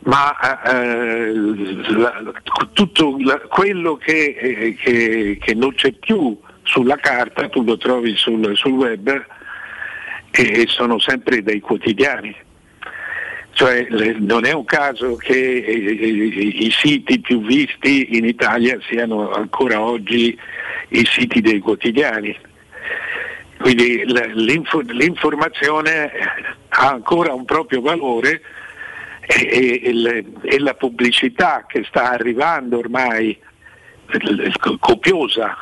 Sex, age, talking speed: male, 60-79, 100 wpm